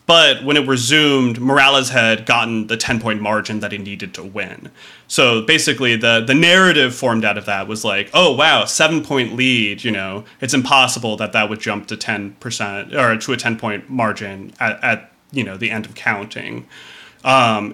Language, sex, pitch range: English, male, 105-130 Hz